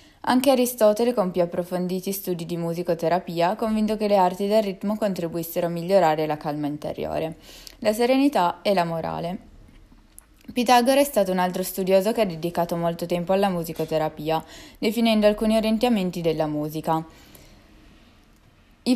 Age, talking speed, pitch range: 20-39, 140 wpm, 175-220 Hz